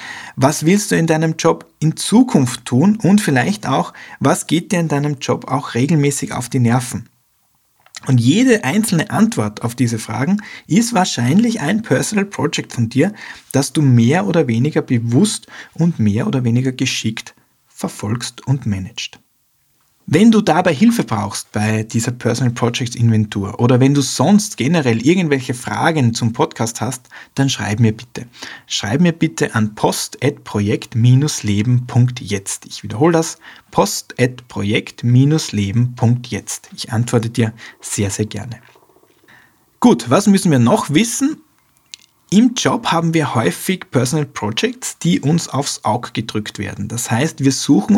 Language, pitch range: German, 115-155 Hz